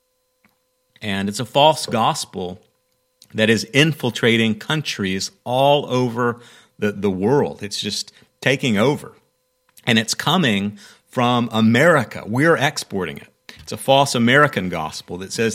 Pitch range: 110-145 Hz